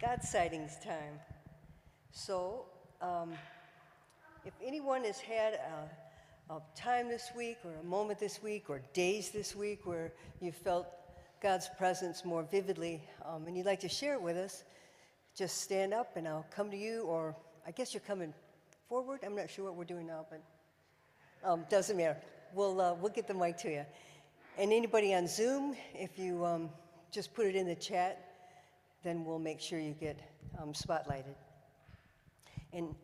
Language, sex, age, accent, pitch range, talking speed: English, female, 60-79, American, 160-200 Hz, 170 wpm